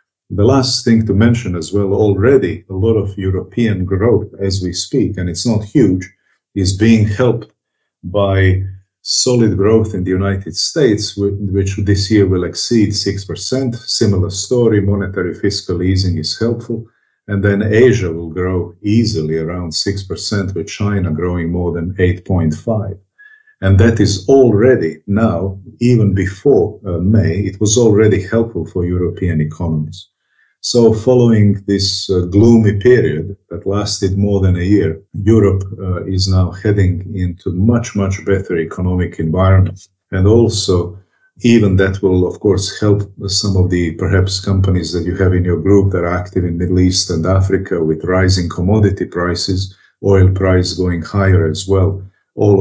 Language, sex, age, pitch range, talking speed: German, male, 50-69, 90-105 Hz, 150 wpm